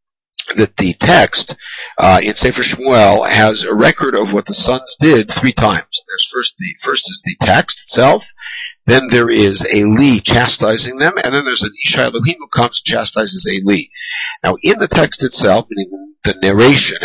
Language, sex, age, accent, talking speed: English, male, 60-79, American, 185 wpm